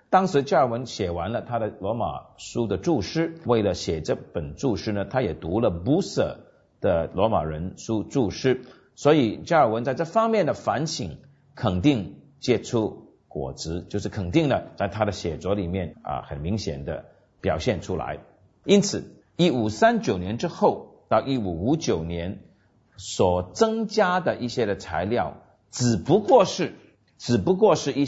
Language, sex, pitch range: Chinese, male, 95-145 Hz